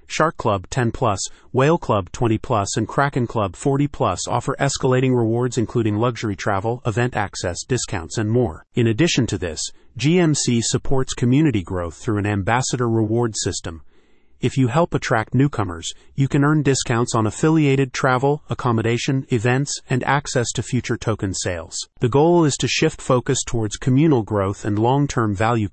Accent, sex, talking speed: American, male, 155 wpm